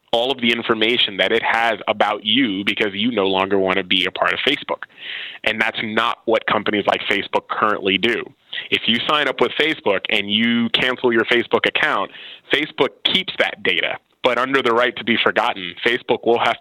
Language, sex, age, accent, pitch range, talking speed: English, male, 20-39, American, 100-125 Hz, 200 wpm